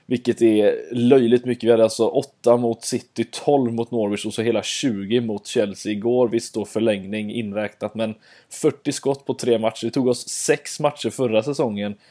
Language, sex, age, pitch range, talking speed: Swedish, male, 20-39, 110-125 Hz, 185 wpm